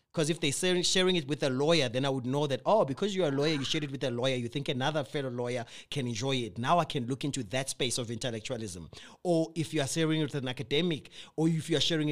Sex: male